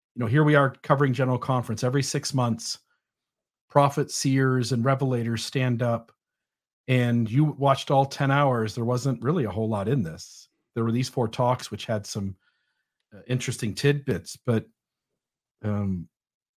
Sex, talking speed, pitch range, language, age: male, 160 wpm, 115-140 Hz, English, 40-59